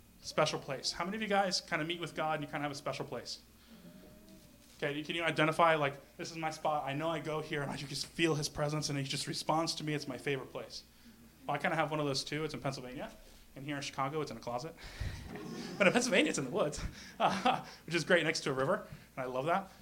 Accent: American